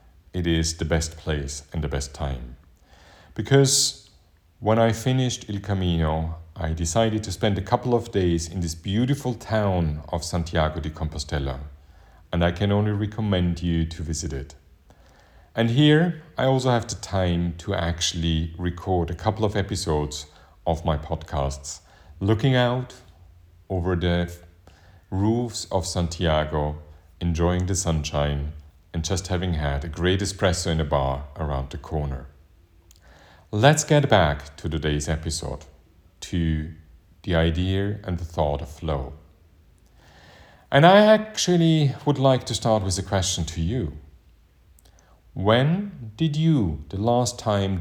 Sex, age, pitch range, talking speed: male, 40-59, 80-105 Hz, 140 wpm